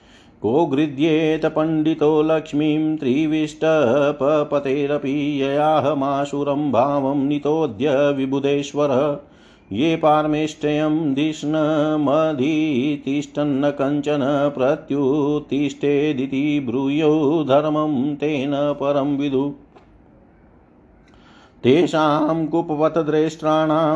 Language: Hindi